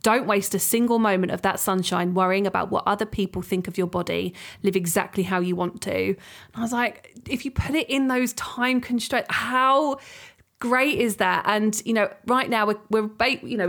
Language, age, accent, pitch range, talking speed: English, 20-39, British, 185-230 Hz, 210 wpm